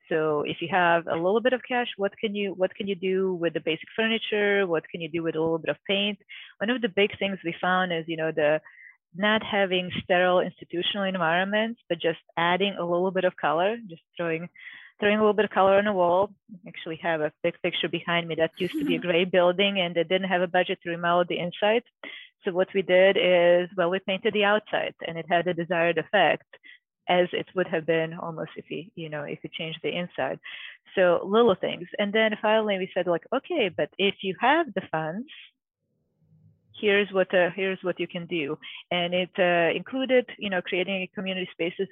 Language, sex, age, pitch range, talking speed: English, female, 20-39, 170-205 Hz, 220 wpm